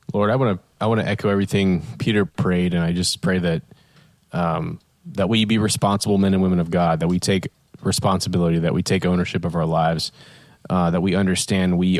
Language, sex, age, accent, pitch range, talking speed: English, male, 20-39, American, 90-105 Hz, 210 wpm